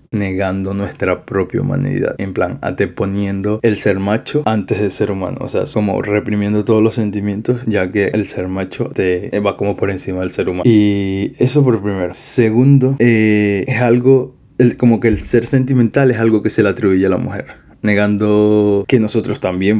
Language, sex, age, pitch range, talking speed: Spanish, male, 20-39, 95-115 Hz, 190 wpm